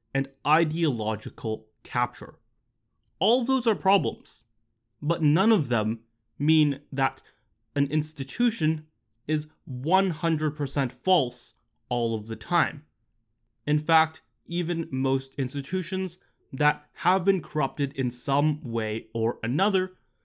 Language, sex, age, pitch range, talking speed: English, male, 20-39, 120-165 Hz, 105 wpm